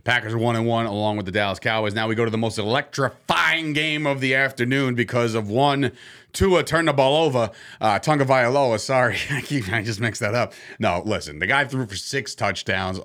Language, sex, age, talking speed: English, male, 30-49, 205 wpm